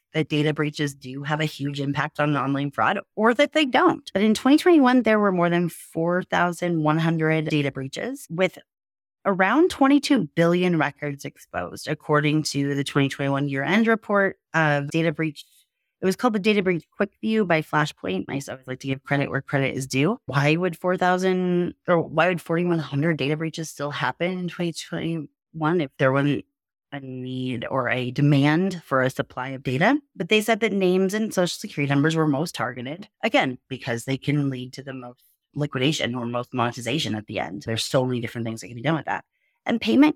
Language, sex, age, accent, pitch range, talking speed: English, female, 30-49, American, 135-180 Hz, 190 wpm